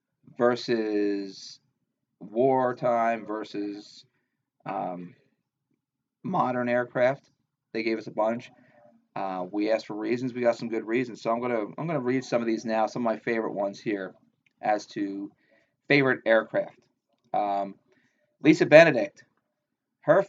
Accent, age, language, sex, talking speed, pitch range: American, 30-49, English, male, 135 wpm, 105-125 Hz